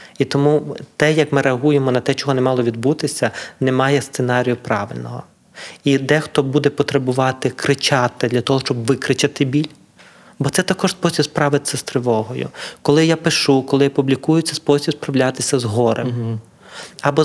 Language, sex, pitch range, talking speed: Ukrainian, male, 125-150 Hz, 155 wpm